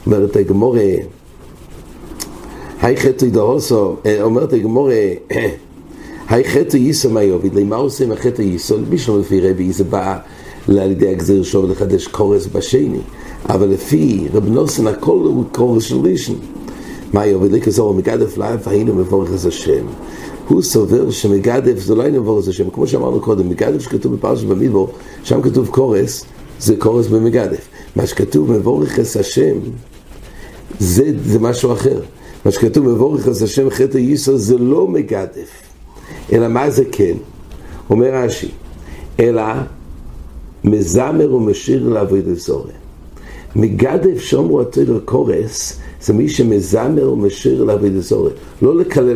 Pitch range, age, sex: 85-125 Hz, 60-79, male